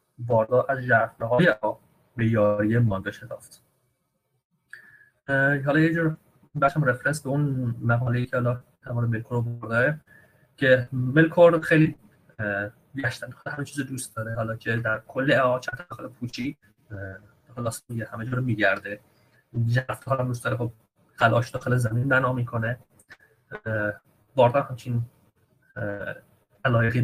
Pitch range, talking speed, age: 115-140 Hz, 120 wpm, 30-49